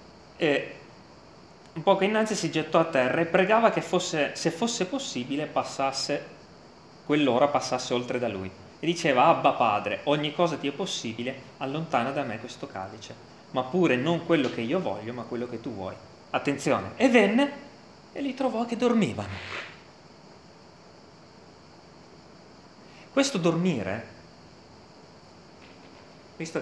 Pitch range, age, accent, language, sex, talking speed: 130-195 Hz, 30-49, native, Italian, male, 130 wpm